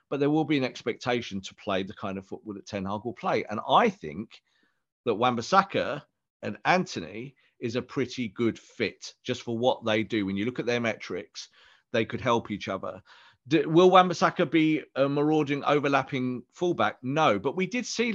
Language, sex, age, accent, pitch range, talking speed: English, male, 40-59, British, 110-150 Hz, 190 wpm